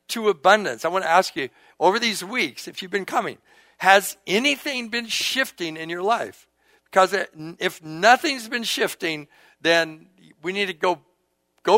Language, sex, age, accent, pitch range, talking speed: English, male, 60-79, American, 140-200 Hz, 165 wpm